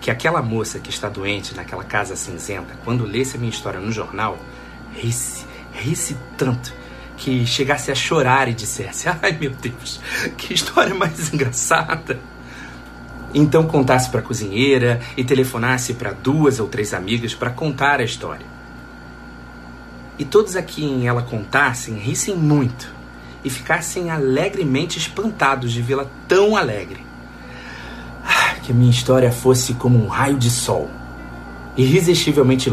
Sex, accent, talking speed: male, Brazilian, 140 wpm